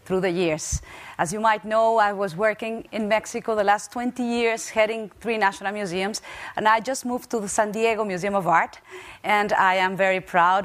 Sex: female